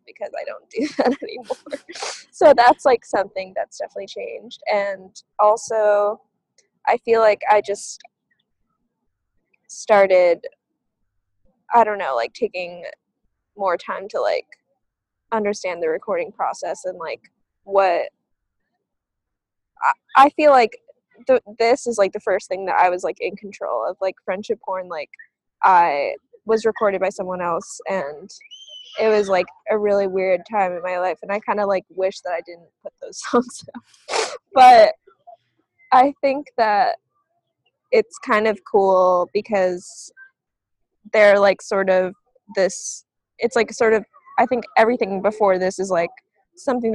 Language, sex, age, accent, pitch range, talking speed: English, female, 10-29, American, 190-290 Hz, 145 wpm